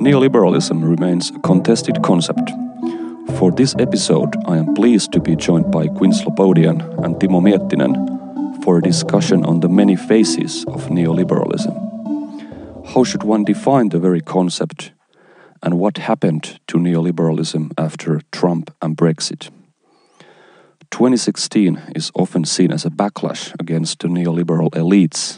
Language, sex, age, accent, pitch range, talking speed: Finnish, male, 40-59, native, 80-95 Hz, 130 wpm